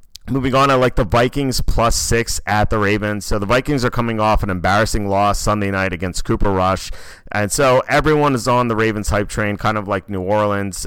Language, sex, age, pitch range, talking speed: English, male, 30-49, 100-120 Hz, 215 wpm